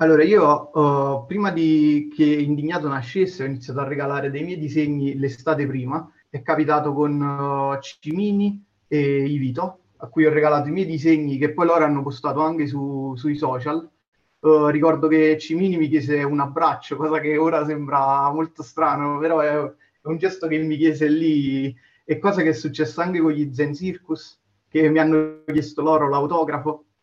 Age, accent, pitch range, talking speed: 30-49, native, 140-155 Hz, 170 wpm